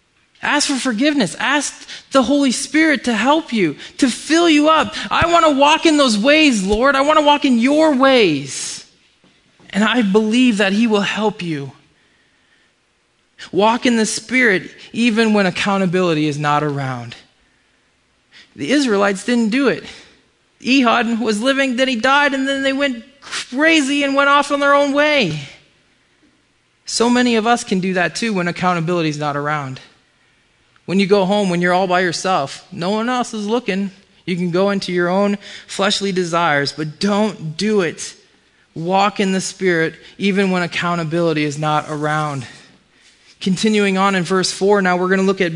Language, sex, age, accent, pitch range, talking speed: English, male, 20-39, American, 180-250 Hz, 170 wpm